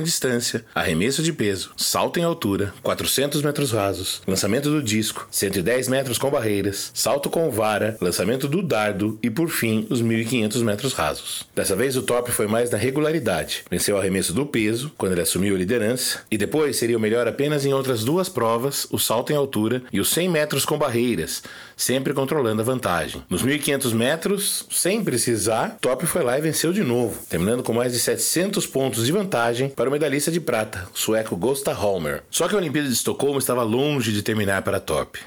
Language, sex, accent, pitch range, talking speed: Portuguese, male, Brazilian, 110-150 Hz, 190 wpm